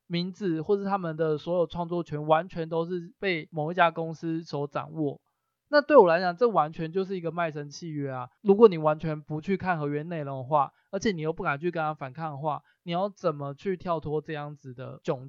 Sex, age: male, 20-39